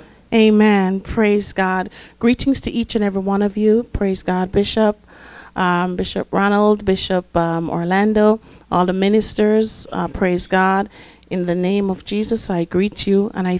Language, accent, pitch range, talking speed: English, American, 180-220 Hz, 160 wpm